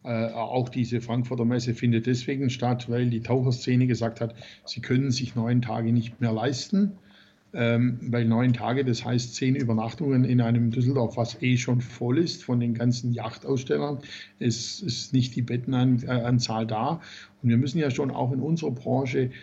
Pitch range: 120-135 Hz